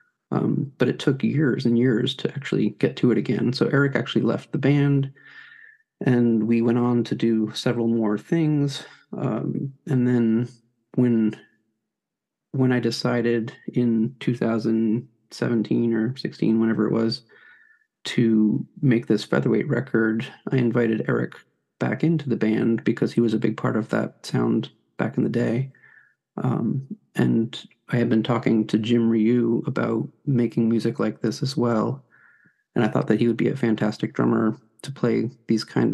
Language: English